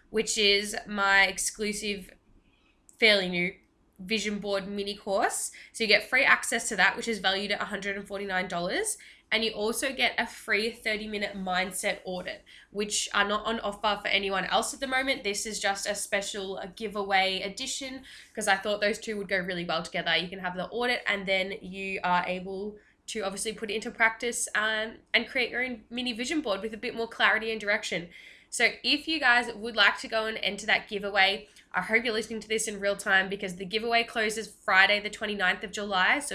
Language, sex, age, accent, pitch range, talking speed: English, female, 10-29, Australian, 195-225 Hz, 200 wpm